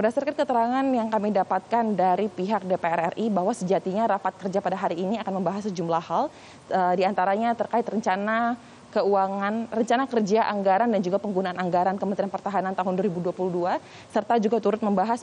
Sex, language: female, Indonesian